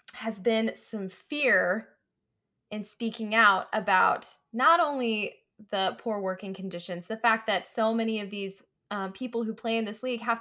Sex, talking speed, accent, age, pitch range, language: female, 165 wpm, American, 10-29, 195-250 Hz, English